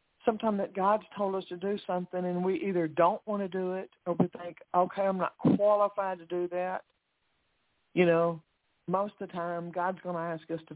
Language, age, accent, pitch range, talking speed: English, 60-79, American, 160-185 Hz, 210 wpm